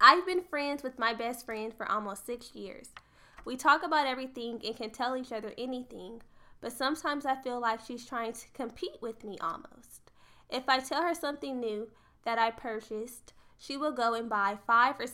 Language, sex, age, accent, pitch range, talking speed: English, female, 10-29, American, 215-260 Hz, 195 wpm